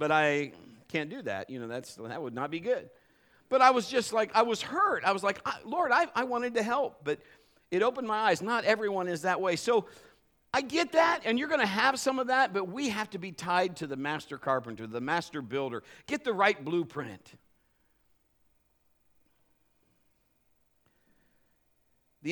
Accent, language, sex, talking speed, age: American, English, male, 190 wpm, 50-69